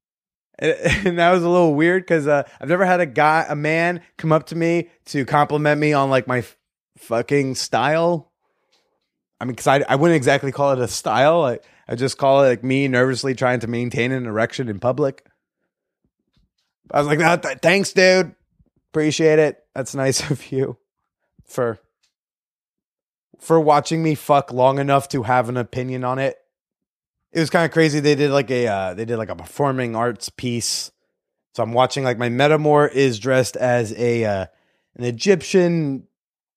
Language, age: English, 20-39